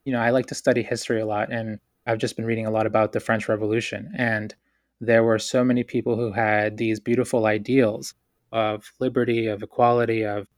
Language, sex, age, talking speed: English, male, 20-39, 205 wpm